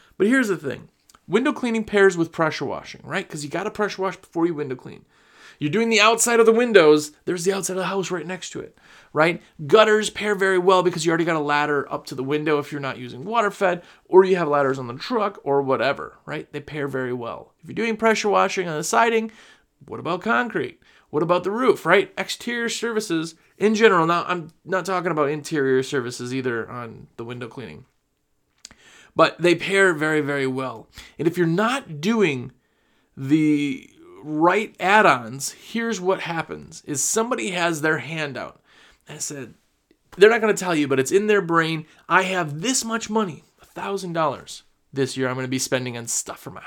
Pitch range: 145-205 Hz